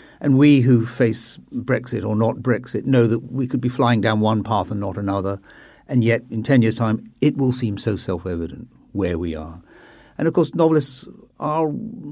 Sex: male